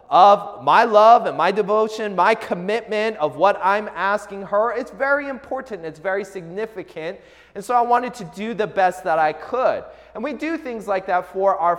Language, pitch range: English, 175-240 Hz